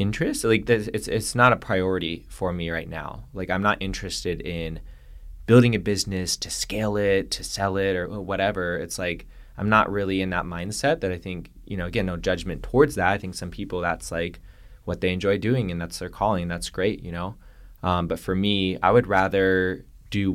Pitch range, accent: 80-100 Hz, American